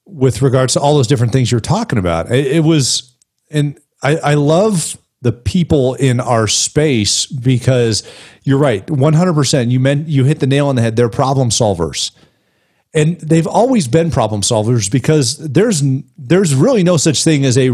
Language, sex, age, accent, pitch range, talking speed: English, male, 40-59, American, 115-145 Hz, 180 wpm